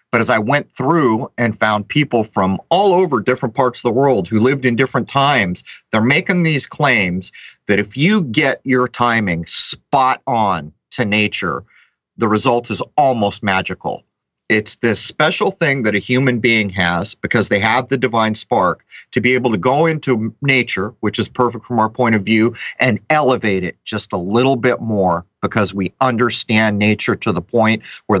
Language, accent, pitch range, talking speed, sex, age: English, American, 105-135 Hz, 185 wpm, male, 40-59